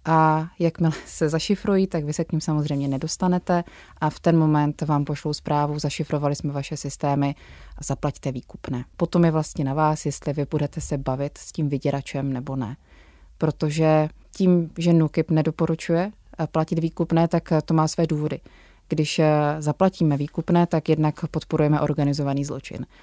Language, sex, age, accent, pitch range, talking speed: Czech, female, 20-39, native, 145-165 Hz, 155 wpm